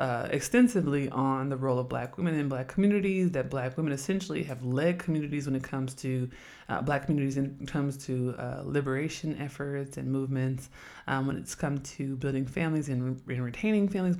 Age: 20-39